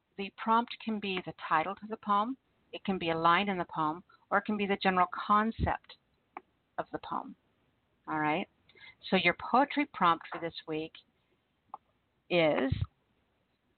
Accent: American